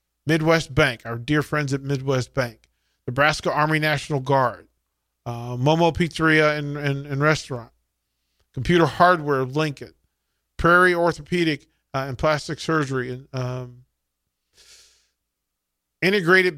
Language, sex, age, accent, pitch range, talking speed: English, male, 40-59, American, 130-165 Hz, 115 wpm